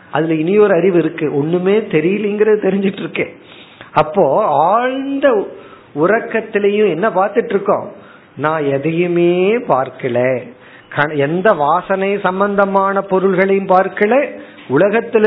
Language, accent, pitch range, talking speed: Tamil, native, 150-210 Hz, 40 wpm